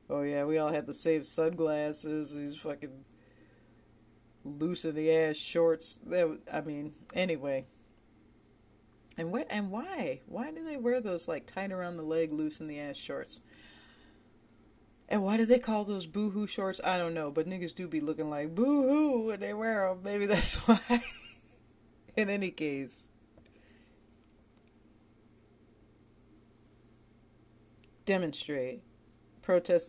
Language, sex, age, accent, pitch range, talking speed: English, female, 40-59, American, 115-170 Hz, 135 wpm